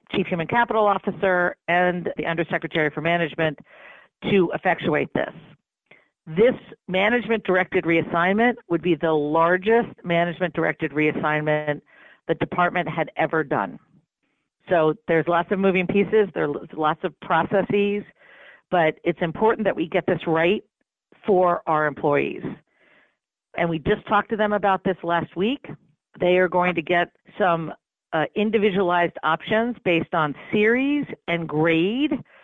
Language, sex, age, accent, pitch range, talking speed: English, female, 50-69, American, 165-205 Hz, 135 wpm